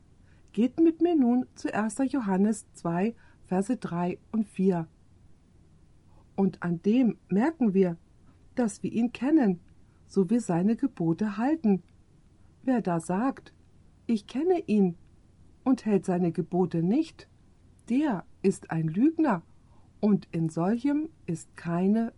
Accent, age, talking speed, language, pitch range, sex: German, 50-69, 125 wpm, German, 165-240 Hz, female